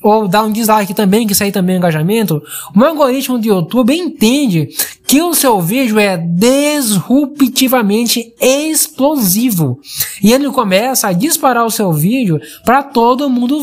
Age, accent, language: 20-39, Brazilian, Portuguese